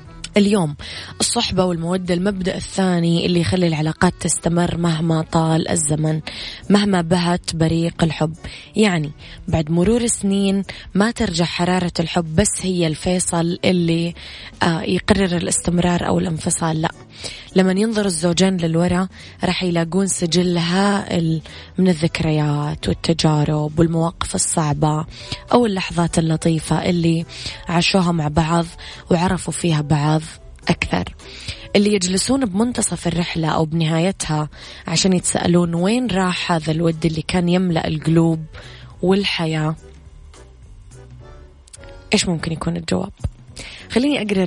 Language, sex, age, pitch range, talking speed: Arabic, female, 20-39, 160-195 Hz, 110 wpm